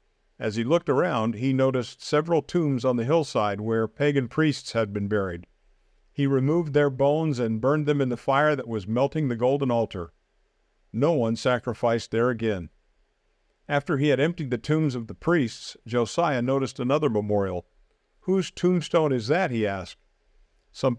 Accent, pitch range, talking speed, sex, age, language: American, 115-145 Hz, 165 wpm, male, 50-69, English